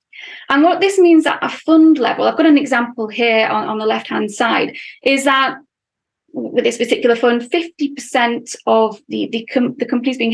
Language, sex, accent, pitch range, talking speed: English, female, British, 230-290 Hz, 190 wpm